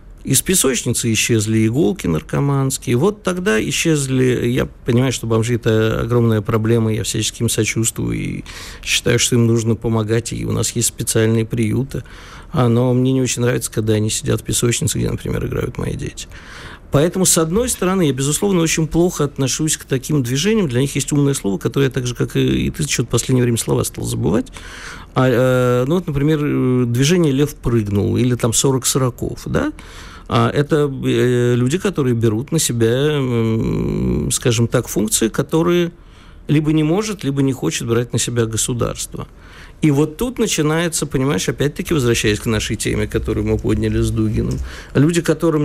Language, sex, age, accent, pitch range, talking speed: Russian, male, 50-69, native, 115-150 Hz, 170 wpm